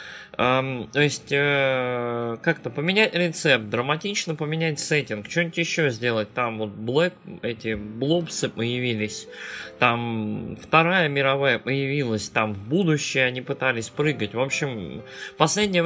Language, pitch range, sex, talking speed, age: Russian, 120-160 Hz, male, 120 wpm, 20-39